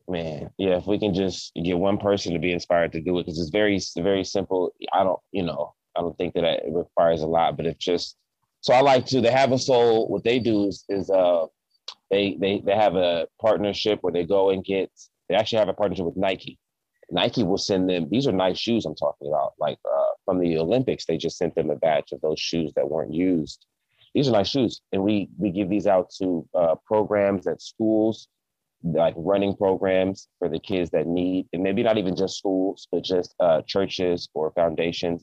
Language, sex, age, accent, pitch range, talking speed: English, male, 30-49, American, 85-100 Hz, 220 wpm